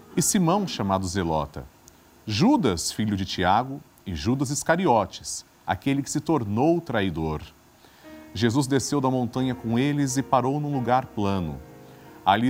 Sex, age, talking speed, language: male, 40-59, 135 wpm, Portuguese